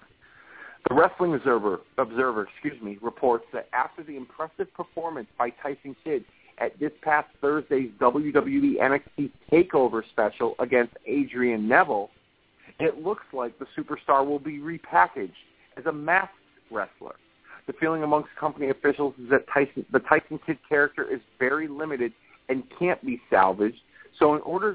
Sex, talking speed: male, 145 wpm